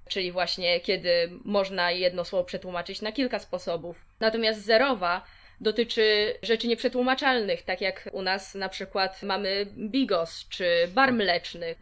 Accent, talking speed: native, 130 wpm